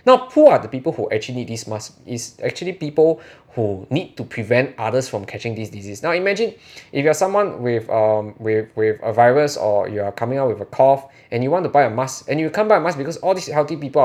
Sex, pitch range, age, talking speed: male, 110-155 Hz, 20-39, 250 wpm